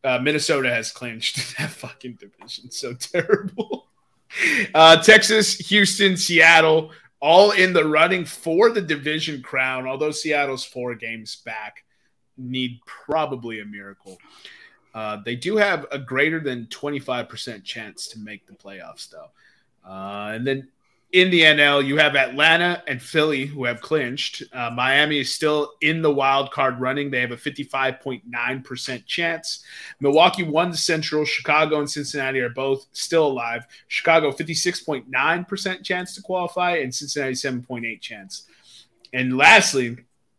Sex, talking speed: male, 145 wpm